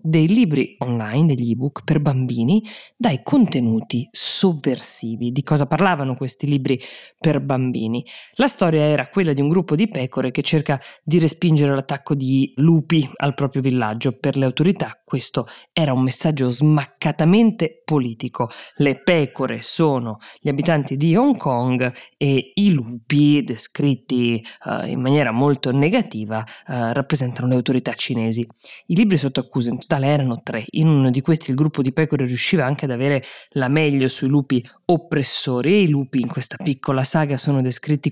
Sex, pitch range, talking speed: female, 130-160 Hz, 155 wpm